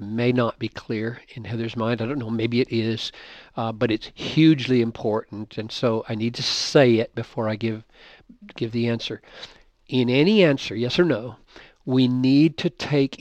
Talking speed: 185 wpm